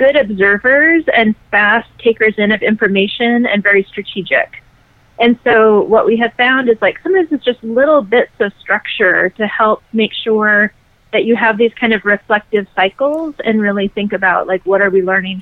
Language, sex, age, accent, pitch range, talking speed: English, female, 30-49, American, 190-230 Hz, 185 wpm